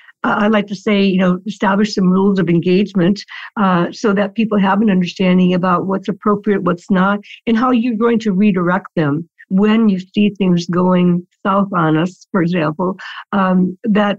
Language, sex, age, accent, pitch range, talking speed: English, female, 60-79, American, 180-210 Hz, 180 wpm